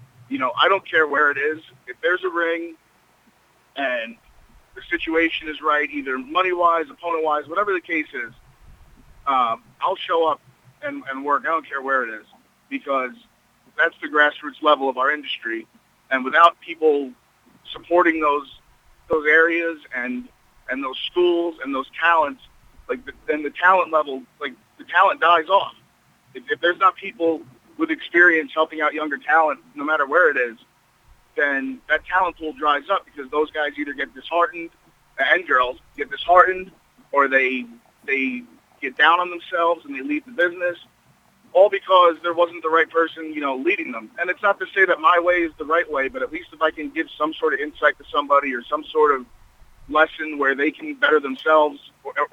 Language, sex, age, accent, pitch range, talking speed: English, male, 40-59, American, 145-180 Hz, 185 wpm